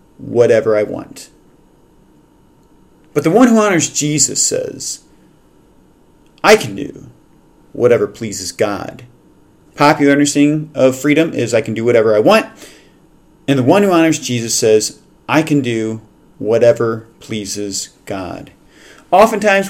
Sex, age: male, 40-59